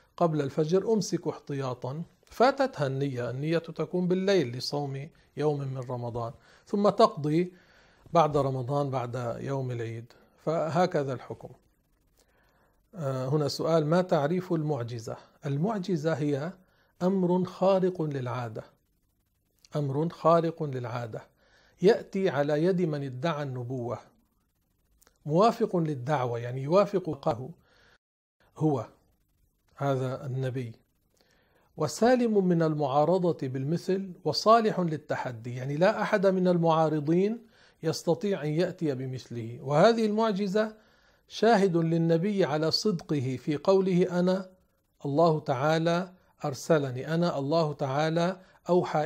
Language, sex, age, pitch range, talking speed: Arabic, male, 50-69, 140-185 Hz, 100 wpm